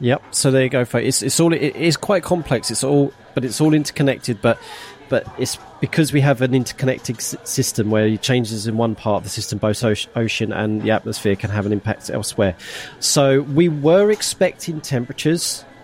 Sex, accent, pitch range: male, British, 110-145 Hz